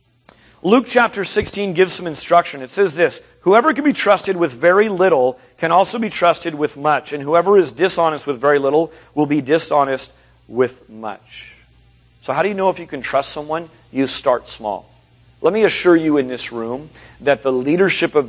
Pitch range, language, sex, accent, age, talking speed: 120-160 Hz, English, male, American, 40-59, 190 wpm